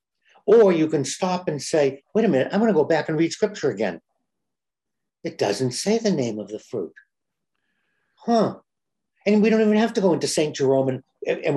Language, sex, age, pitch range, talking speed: English, male, 60-79, 150-200 Hz, 200 wpm